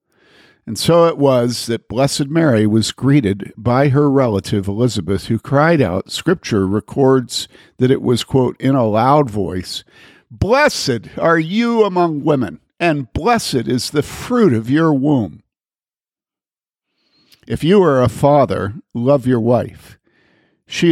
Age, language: 50-69, English